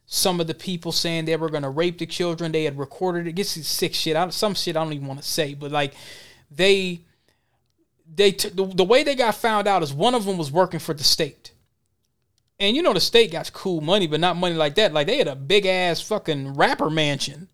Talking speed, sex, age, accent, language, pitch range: 245 wpm, male, 20-39, American, English, 155-205 Hz